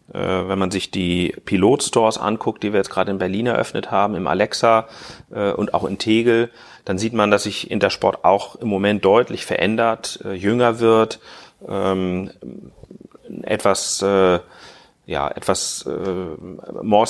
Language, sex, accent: German, male, German